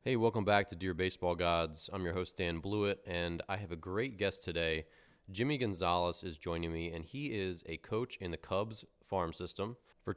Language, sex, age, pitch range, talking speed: English, male, 20-39, 80-100 Hz, 205 wpm